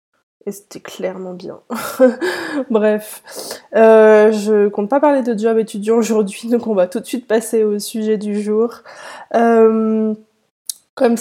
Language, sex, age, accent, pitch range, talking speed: French, female, 20-39, French, 190-230 Hz, 150 wpm